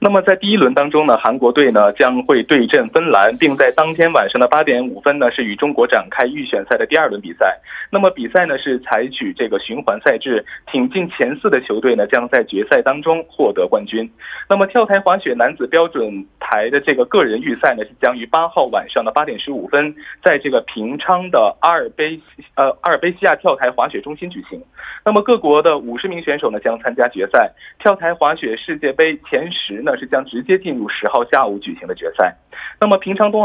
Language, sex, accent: Korean, male, Chinese